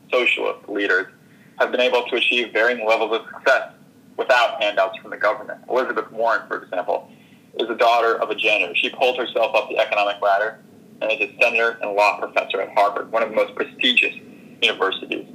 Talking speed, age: 190 wpm, 30-49